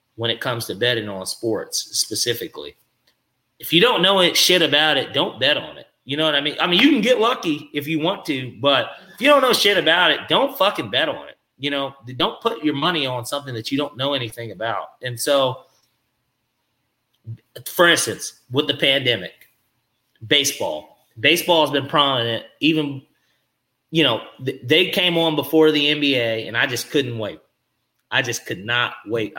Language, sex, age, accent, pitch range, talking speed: English, male, 30-49, American, 120-160 Hz, 190 wpm